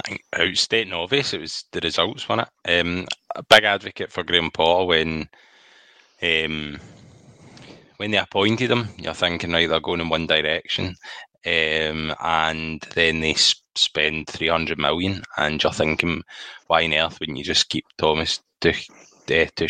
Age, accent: 10-29, British